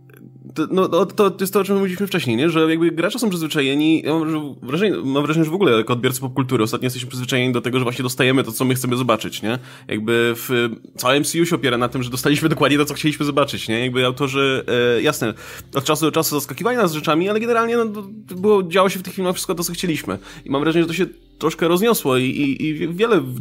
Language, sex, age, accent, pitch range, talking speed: Polish, male, 20-39, native, 125-170 Hz, 240 wpm